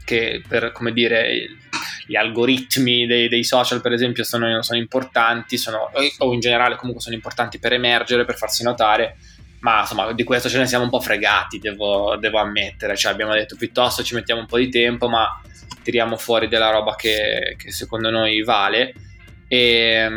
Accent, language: native, Italian